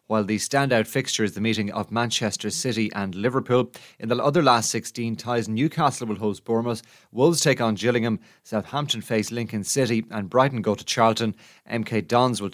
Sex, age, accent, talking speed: male, 30-49, Irish, 180 wpm